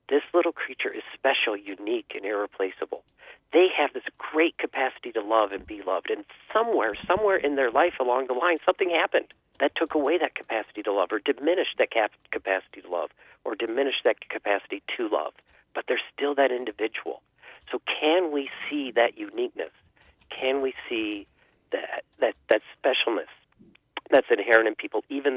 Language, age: English, 50-69